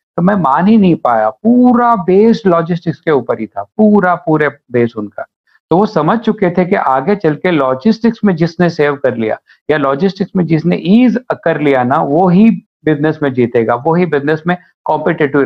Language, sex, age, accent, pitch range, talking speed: Hindi, male, 50-69, native, 140-175 Hz, 130 wpm